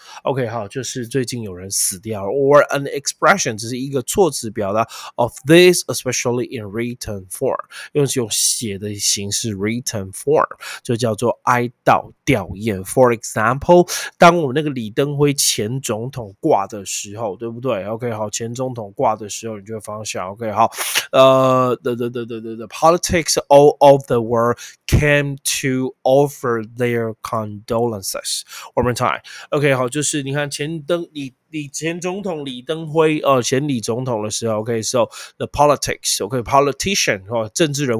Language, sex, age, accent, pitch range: Chinese, male, 20-39, native, 110-145 Hz